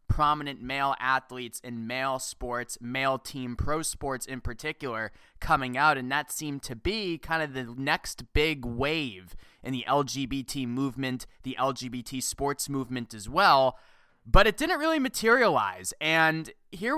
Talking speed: 150 wpm